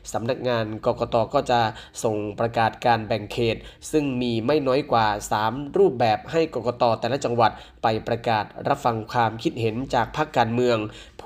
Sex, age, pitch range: male, 20-39, 115-140 Hz